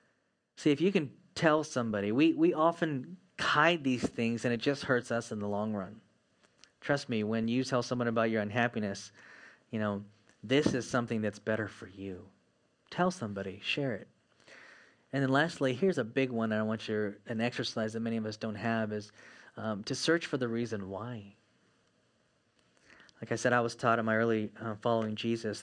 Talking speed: 190 wpm